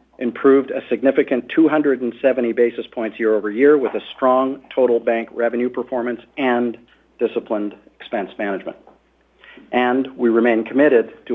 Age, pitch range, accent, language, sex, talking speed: 50-69, 115-145 Hz, American, English, male, 130 wpm